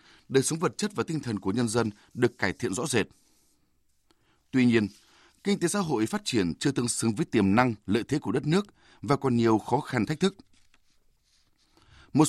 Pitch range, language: 105-150 Hz, Vietnamese